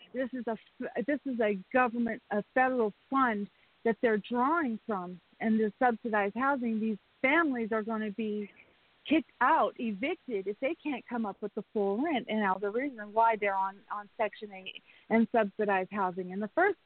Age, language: 40-59, English